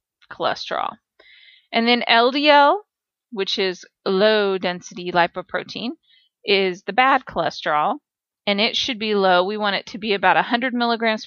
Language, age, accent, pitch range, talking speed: English, 30-49, American, 190-225 Hz, 135 wpm